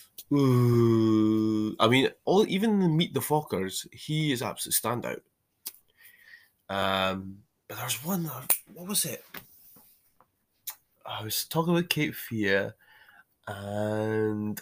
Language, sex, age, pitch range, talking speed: English, male, 20-39, 100-150 Hz, 110 wpm